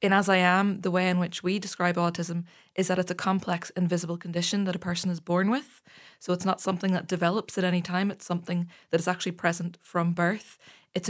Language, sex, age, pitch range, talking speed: English, female, 20-39, 175-190 Hz, 225 wpm